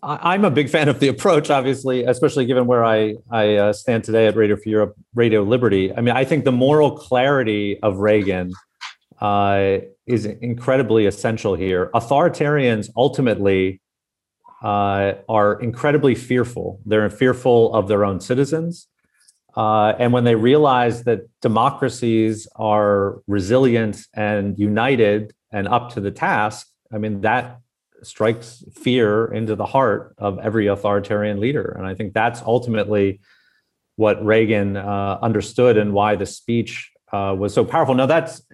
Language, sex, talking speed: English, male, 145 wpm